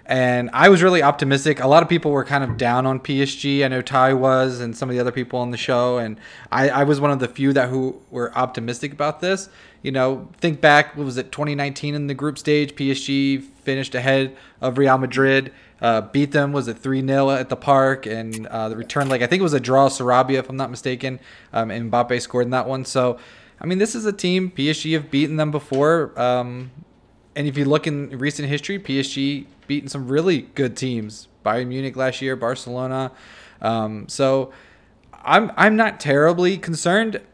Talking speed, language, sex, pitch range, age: 210 wpm, English, male, 130-155 Hz, 20-39